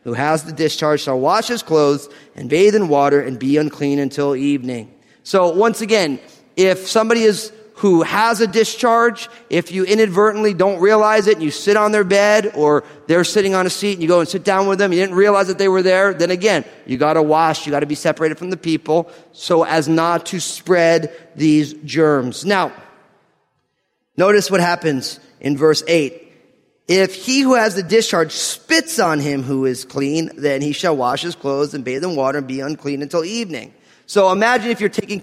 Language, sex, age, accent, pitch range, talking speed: English, male, 30-49, American, 150-200 Hz, 200 wpm